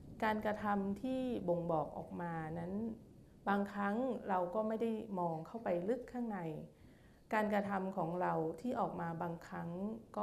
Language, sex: Thai, female